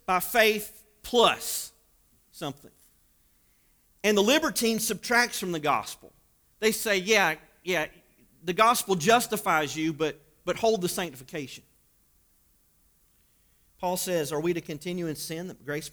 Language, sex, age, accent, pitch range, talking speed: English, male, 40-59, American, 145-200 Hz, 130 wpm